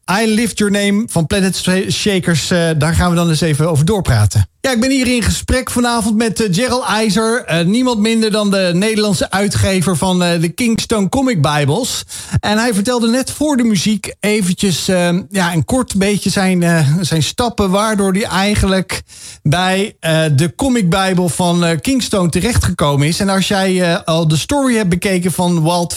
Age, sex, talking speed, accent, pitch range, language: 50-69, male, 165 wpm, Dutch, 165-205 Hz, Dutch